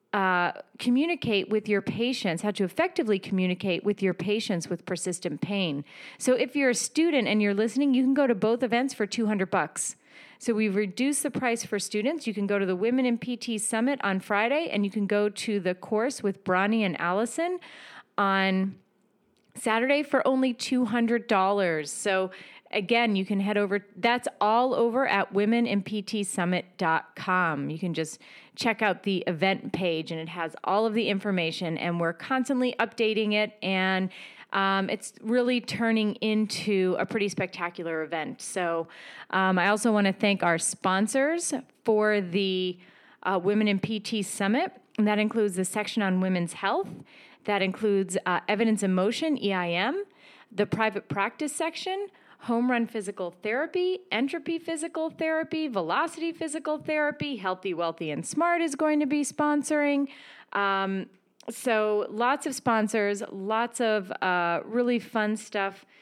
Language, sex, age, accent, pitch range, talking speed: English, female, 30-49, American, 190-250 Hz, 155 wpm